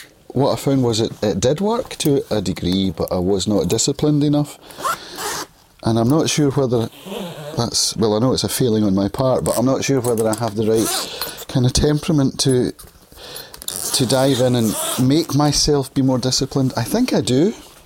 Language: English